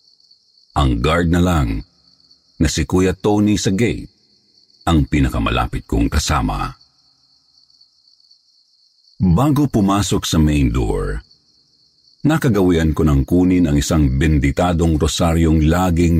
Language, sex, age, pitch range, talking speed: Filipino, male, 50-69, 70-100 Hz, 105 wpm